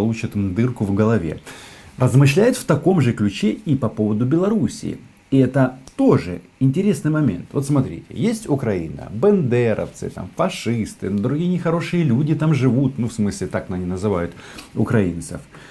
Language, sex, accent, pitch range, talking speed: Russian, male, native, 100-140 Hz, 140 wpm